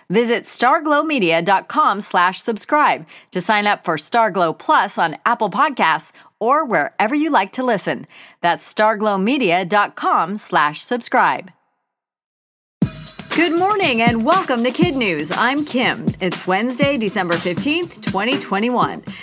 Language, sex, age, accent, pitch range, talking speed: English, female, 40-59, American, 180-245 Hz, 115 wpm